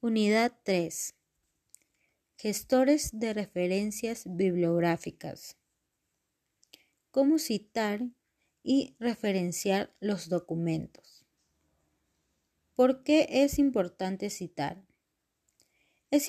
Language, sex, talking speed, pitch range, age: Spanish, female, 65 wpm, 195-265 Hz, 30-49